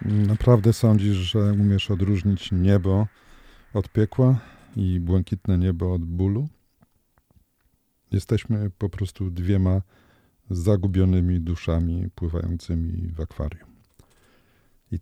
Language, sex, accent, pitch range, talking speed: Polish, male, native, 85-105 Hz, 90 wpm